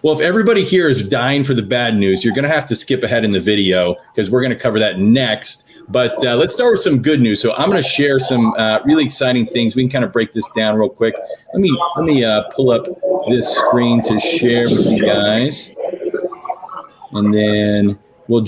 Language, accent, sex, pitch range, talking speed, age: English, American, male, 115-145 Hz, 225 wpm, 40-59